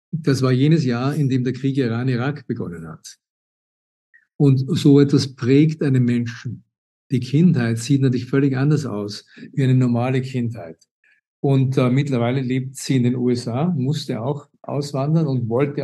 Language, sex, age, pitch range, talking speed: German, male, 50-69, 130-150 Hz, 155 wpm